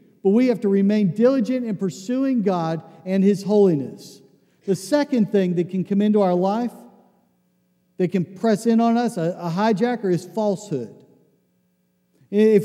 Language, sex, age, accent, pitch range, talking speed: English, male, 50-69, American, 165-220 Hz, 155 wpm